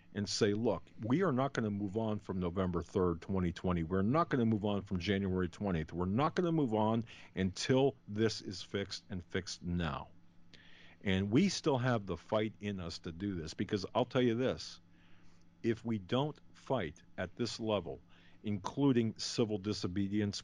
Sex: male